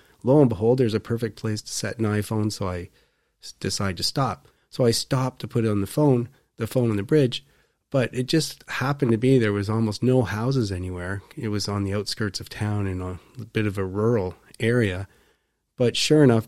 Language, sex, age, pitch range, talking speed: English, male, 30-49, 100-120 Hz, 215 wpm